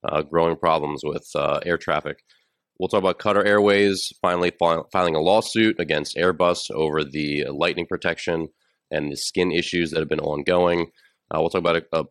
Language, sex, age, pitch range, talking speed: English, male, 30-49, 80-90 Hz, 180 wpm